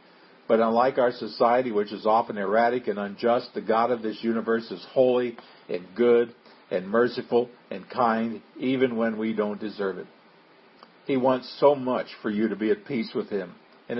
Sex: male